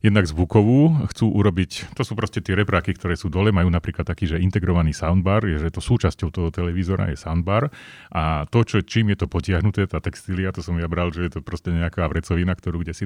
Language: Slovak